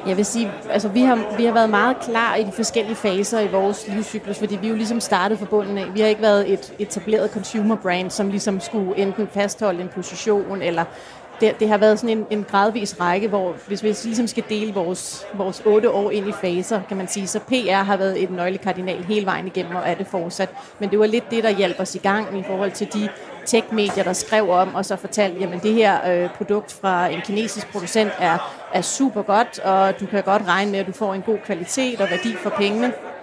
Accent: native